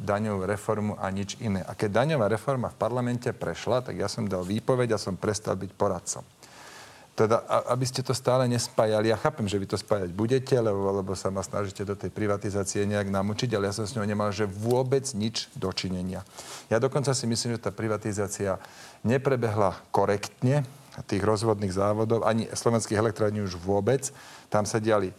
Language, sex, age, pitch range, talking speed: Slovak, male, 40-59, 100-125 Hz, 180 wpm